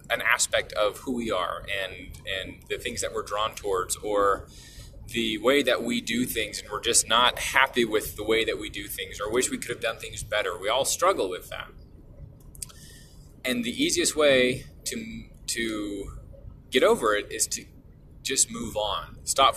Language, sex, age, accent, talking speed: English, male, 20-39, American, 185 wpm